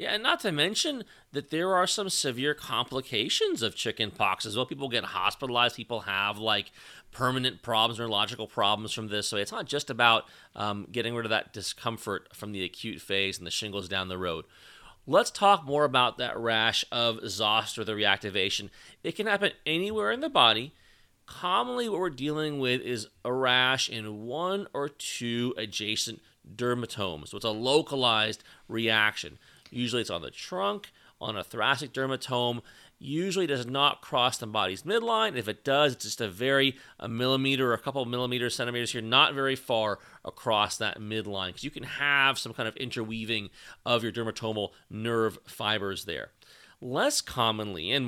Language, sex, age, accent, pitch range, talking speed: English, male, 30-49, American, 110-135 Hz, 175 wpm